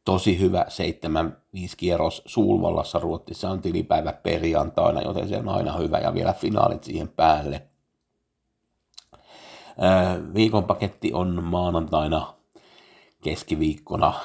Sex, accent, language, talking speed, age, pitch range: male, native, Finnish, 95 wpm, 50-69, 80-95 Hz